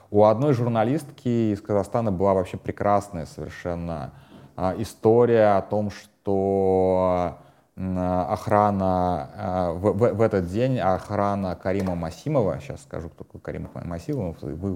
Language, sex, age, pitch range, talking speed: Russian, male, 30-49, 90-105 Hz, 110 wpm